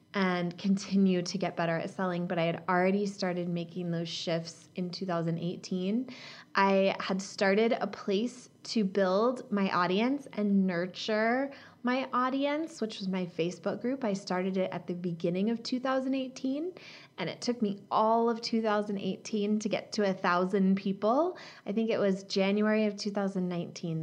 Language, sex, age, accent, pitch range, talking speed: English, female, 20-39, American, 185-225 Hz, 155 wpm